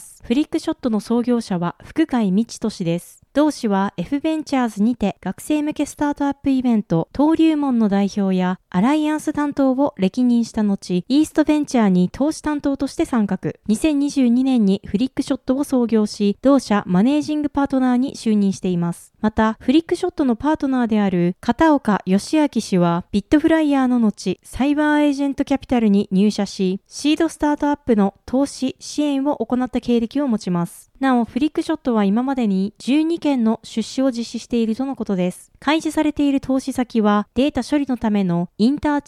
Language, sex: Japanese, female